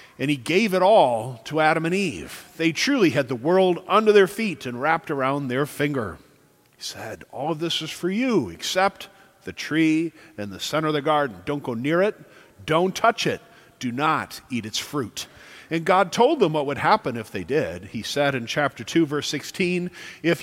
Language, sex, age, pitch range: English, male, 50-69, 140-195 Hz